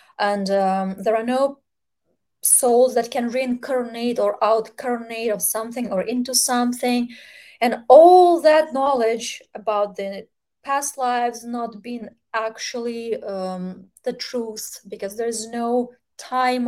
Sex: female